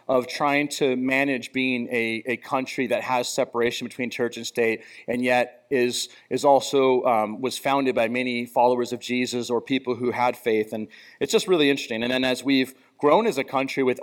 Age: 30-49